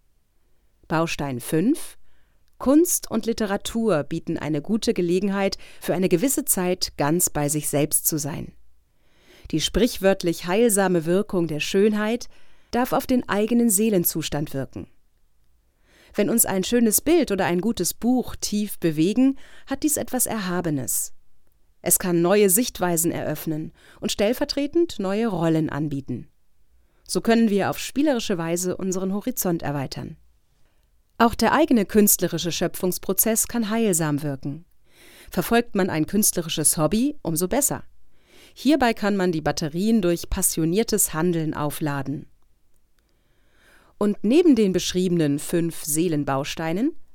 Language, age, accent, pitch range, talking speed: German, 30-49, German, 160-225 Hz, 120 wpm